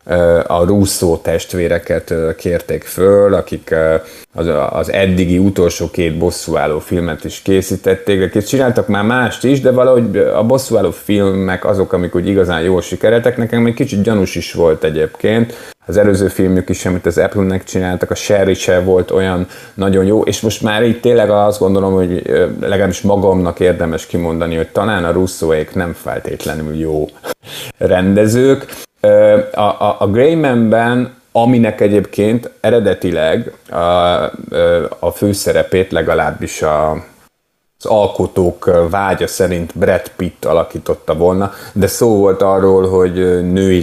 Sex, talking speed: male, 130 wpm